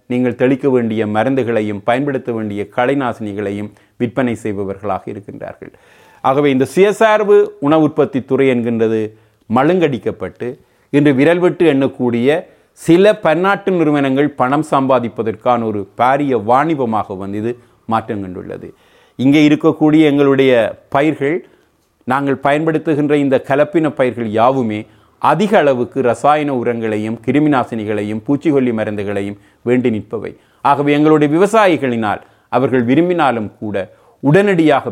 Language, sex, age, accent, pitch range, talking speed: Tamil, male, 30-49, native, 110-140 Hz, 100 wpm